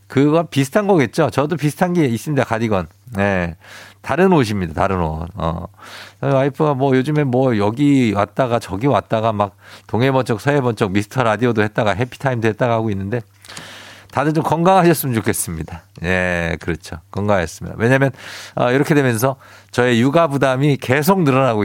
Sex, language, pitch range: male, Korean, 100-135 Hz